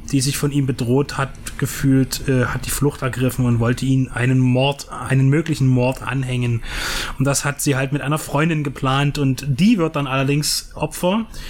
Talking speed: 190 wpm